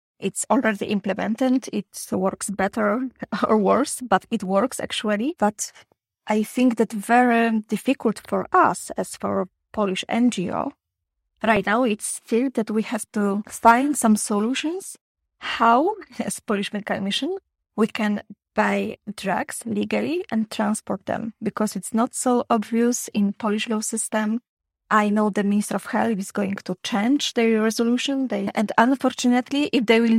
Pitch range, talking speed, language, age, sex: 205-245 Hz, 150 wpm, English, 20-39, female